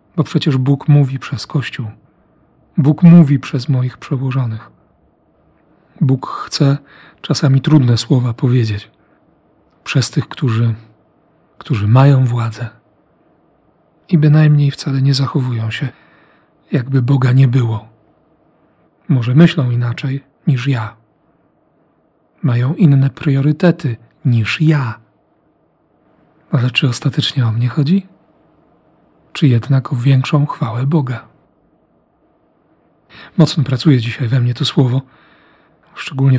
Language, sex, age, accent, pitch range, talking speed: Polish, male, 40-59, native, 125-150 Hz, 105 wpm